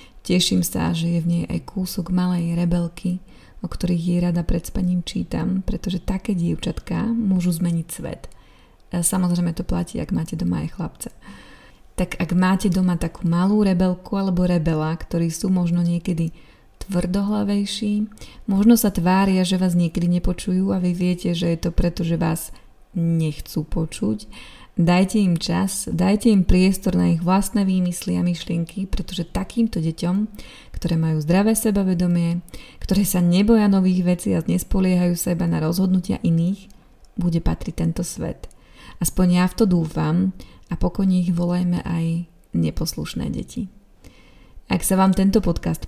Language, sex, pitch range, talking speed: Slovak, female, 170-190 Hz, 150 wpm